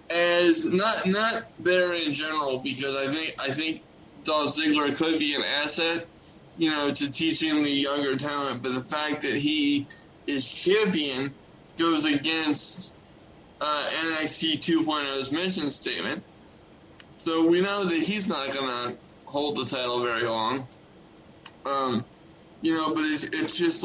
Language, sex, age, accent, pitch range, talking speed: English, male, 20-39, American, 135-165 Hz, 145 wpm